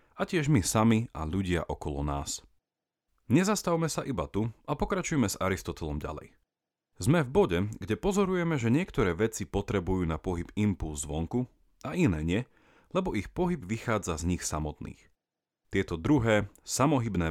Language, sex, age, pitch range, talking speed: Slovak, male, 40-59, 85-130 Hz, 150 wpm